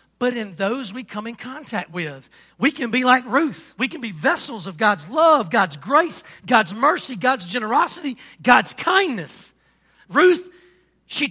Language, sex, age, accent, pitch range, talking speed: English, male, 40-59, American, 185-265 Hz, 160 wpm